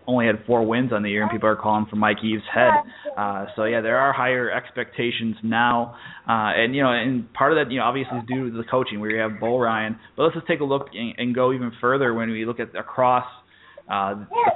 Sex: male